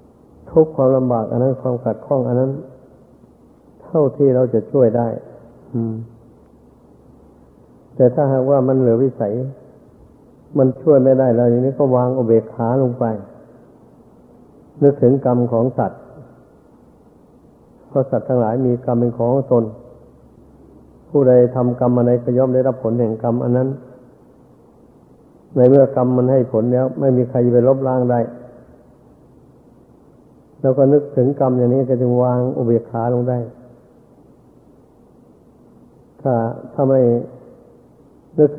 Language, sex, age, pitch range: Thai, male, 60-79, 120-135 Hz